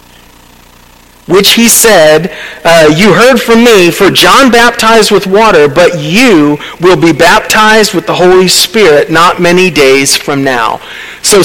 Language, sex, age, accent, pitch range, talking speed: English, male, 40-59, American, 140-195 Hz, 145 wpm